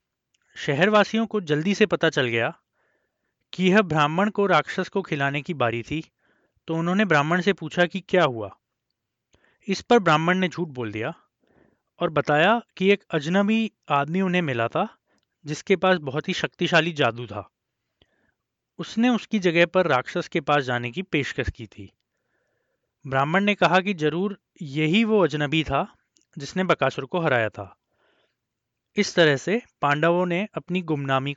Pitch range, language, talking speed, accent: 135-190 Hz, Hindi, 155 wpm, native